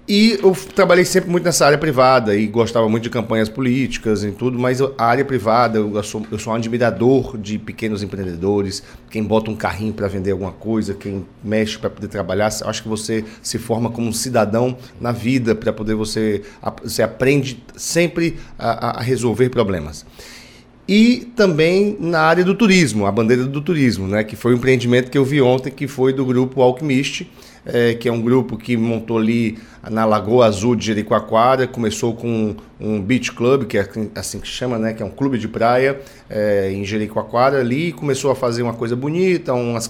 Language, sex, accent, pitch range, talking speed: Portuguese, male, Brazilian, 110-135 Hz, 195 wpm